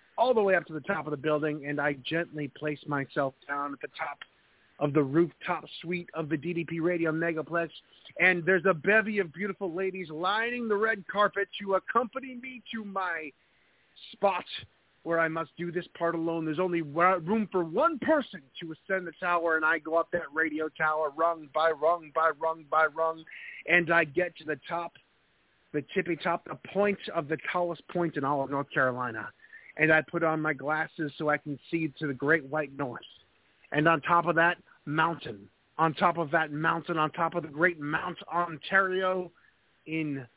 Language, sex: English, male